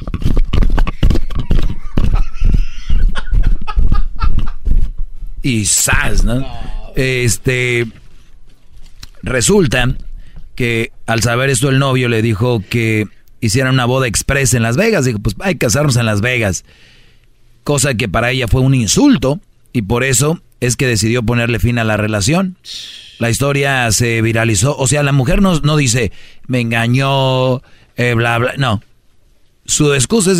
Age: 40-59